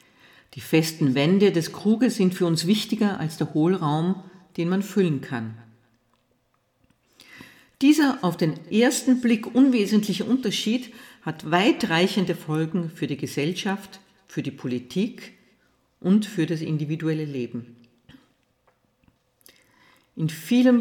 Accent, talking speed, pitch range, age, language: Austrian, 110 wpm, 130-190 Hz, 50-69, German